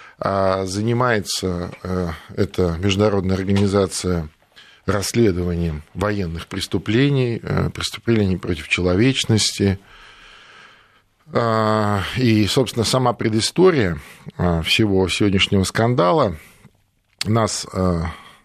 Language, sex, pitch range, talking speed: Russian, male, 95-120 Hz, 60 wpm